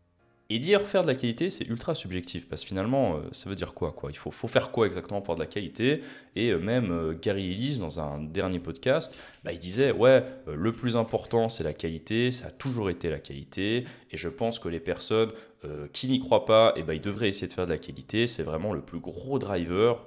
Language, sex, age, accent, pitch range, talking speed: French, male, 20-39, French, 85-125 Hz, 250 wpm